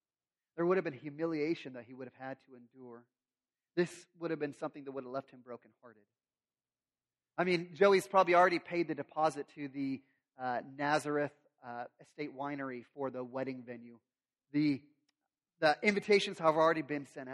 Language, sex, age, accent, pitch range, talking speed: English, male, 30-49, American, 130-180 Hz, 175 wpm